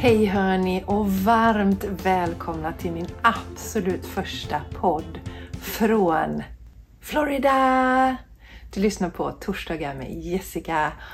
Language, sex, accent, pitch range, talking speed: Swedish, female, native, 170-220 Hz, 95 wpm